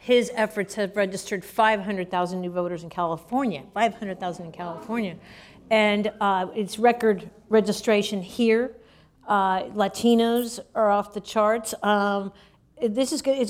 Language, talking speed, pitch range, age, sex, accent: English, 120 wpm, 195-225 Hz, 50-69, female, American